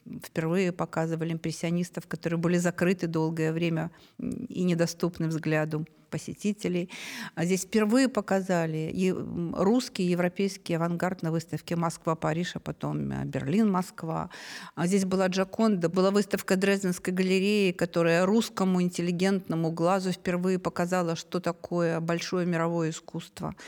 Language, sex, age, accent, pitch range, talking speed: Russian, female, 50-69, native, 170-205 Hz, 110 wpm